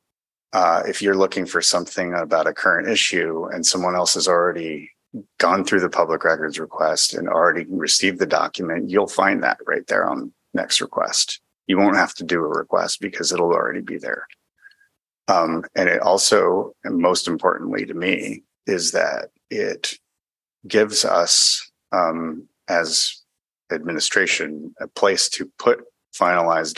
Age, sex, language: 30-49, male, English